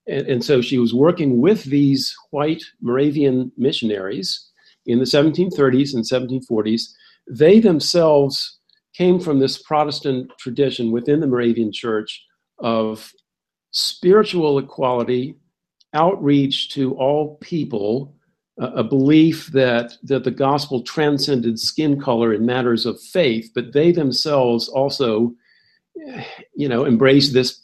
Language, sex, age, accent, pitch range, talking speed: English, male, 50-69, American, 120-150 Hz, 115 wpm